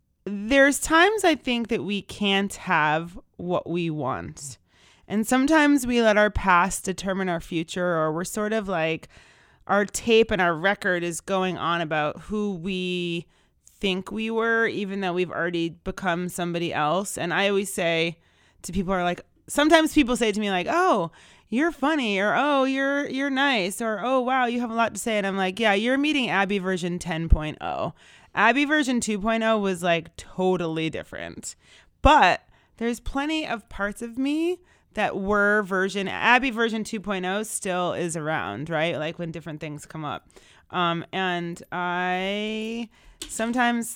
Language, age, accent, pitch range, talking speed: English, 30-49, American, 175-230 Hz, 165 wpm